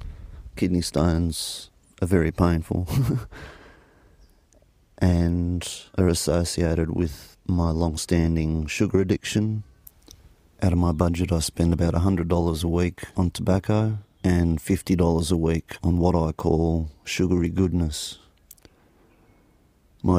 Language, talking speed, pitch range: English, 105 wpm, 80-90 Hz